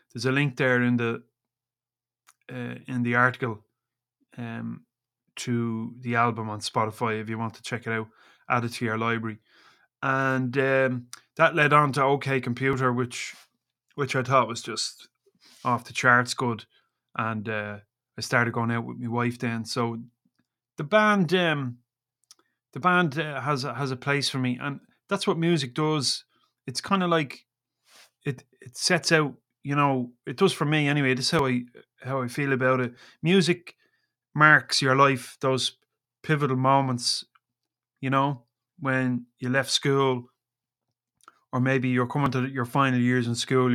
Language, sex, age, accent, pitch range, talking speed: English, male, 30-49, Irish, 115-135 Hz, 165 wpm